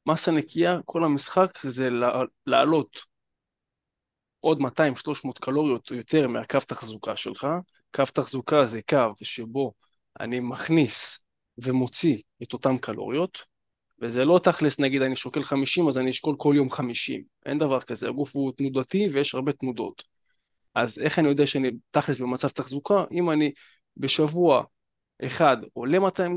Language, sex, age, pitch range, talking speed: Hebrew, male, 20-39, 130-160 Hz, 140 wpm